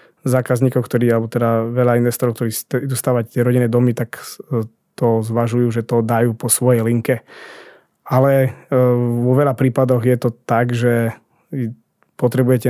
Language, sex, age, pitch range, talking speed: Slovak, male, 20-39, 120-135 Hz, 135 wpm